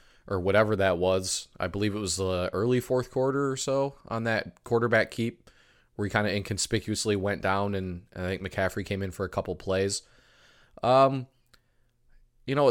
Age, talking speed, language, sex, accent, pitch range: 20-39, 180 wpm, English, male, American, 95-120 Hz